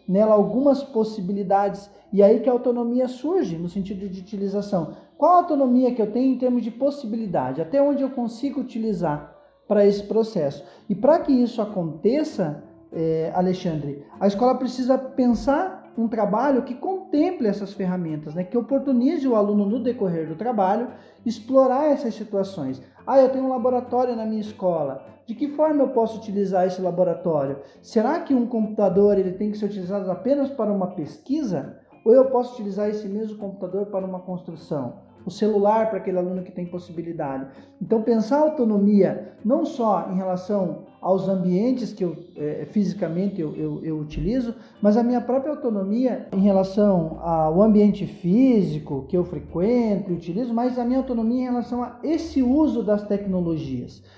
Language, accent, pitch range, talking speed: Portuguese, Brazilian, 185-245 Hz, 165 wpm